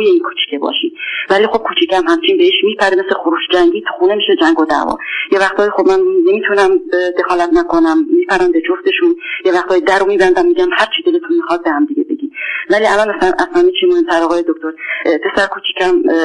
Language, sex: Persian, female